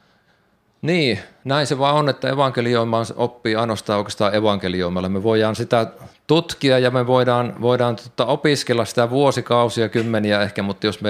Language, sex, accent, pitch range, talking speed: Finnish, male, native, 100-120 Hz, 145 wpm